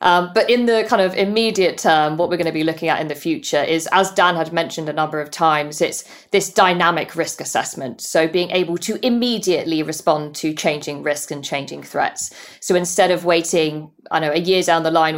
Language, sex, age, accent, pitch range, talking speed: English, female, 40-59, British, 150-185 Hz, 220 wpm